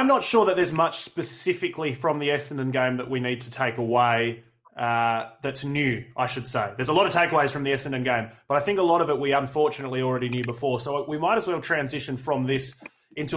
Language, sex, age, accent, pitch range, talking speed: English, male, 20-39, Australian, 125-150 Hz, 240 wpm